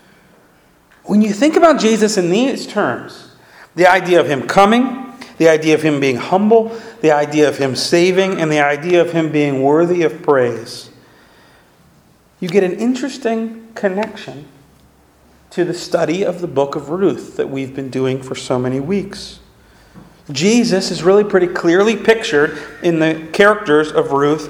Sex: male